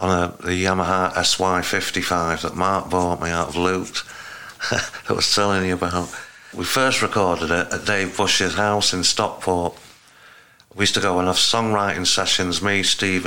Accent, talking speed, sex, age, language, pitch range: British, 165 wpm, male, 50-69, English, 90-100 Hz